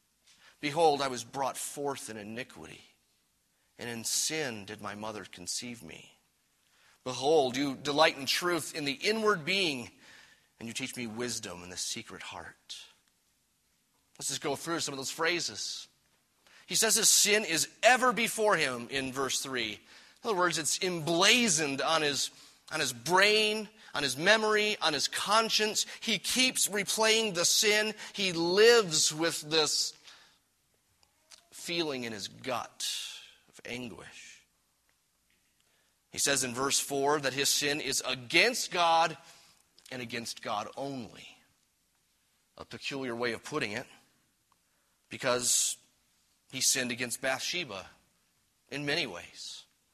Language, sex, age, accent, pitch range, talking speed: English, male, 30-49, American, 130-200 Hz, 135 wpm